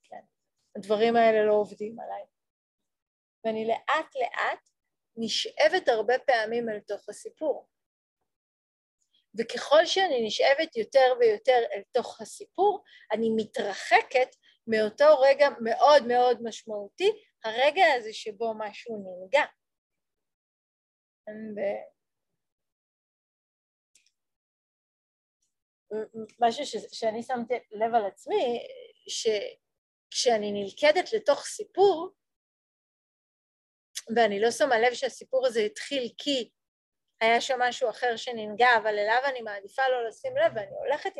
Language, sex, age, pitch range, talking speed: Hebrew, female, 40-59, 220-300 Hz, 100 wpm